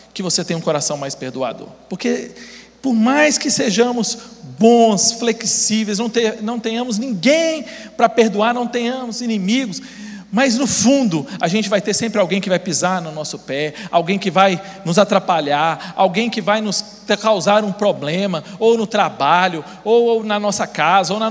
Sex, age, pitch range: male, 40-59, 185-230 Hz